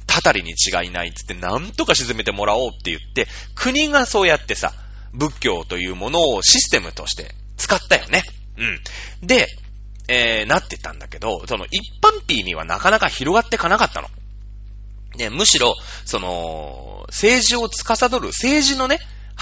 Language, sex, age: Japanese, male, 30-49